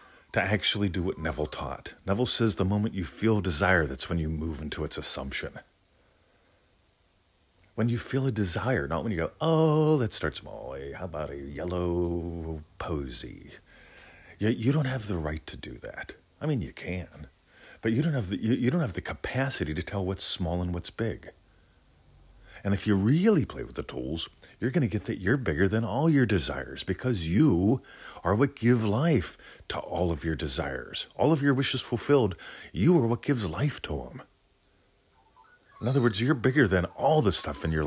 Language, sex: English, male